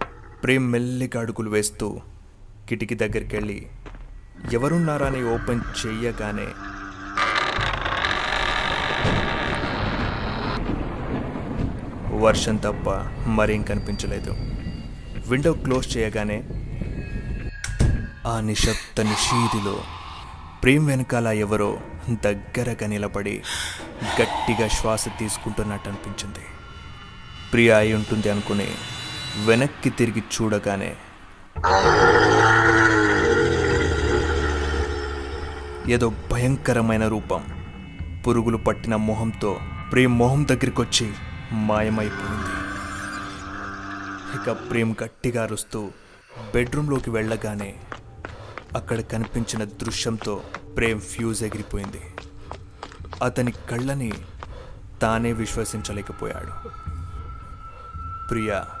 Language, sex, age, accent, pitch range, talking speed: Telugu, male, 20-39, native, 100-115 Hz, 65 wpm